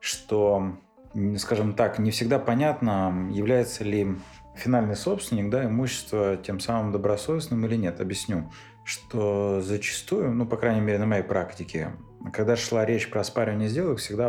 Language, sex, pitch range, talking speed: Russian, male, 100-125 Hz, 145 wpm